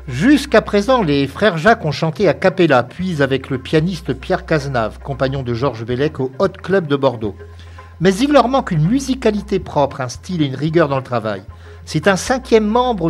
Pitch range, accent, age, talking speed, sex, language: 125-185 Hz, French, 60-79, 195 wpm, male, French